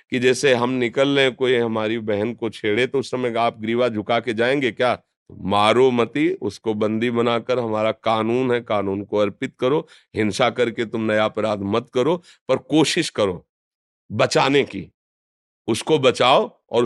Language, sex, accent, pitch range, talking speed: Hindi, male, native, 115-145 Hz, 165 wpm